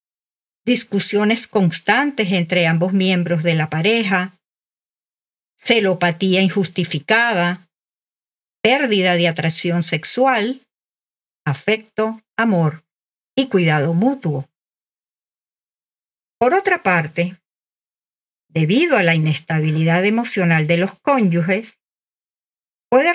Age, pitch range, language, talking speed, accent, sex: 50-69, 170-240 Hz, Spanish, 80 wpm, American, female